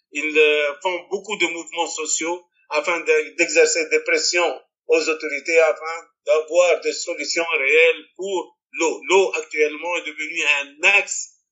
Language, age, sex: French, 50-69, male